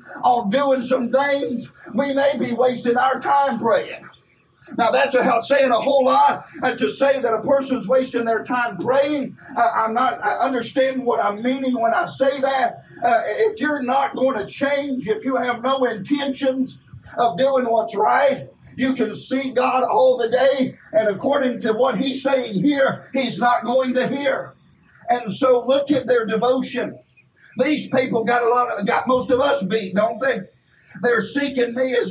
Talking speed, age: 180 wpm, 50-69